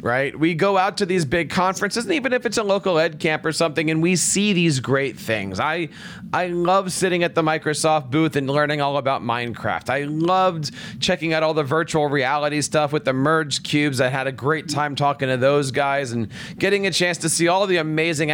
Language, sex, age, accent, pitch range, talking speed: English, male, 40-59, American, 145-190 Hz, 225 wpm